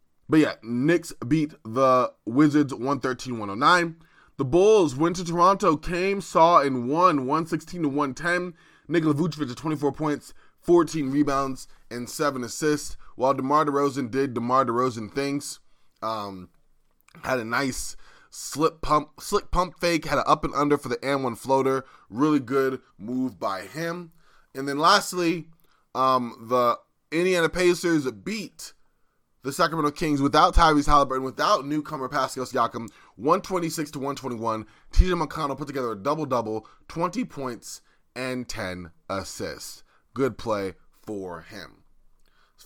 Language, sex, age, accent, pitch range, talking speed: English, male, 20-39, American, 130-165 Hz, 130 wpm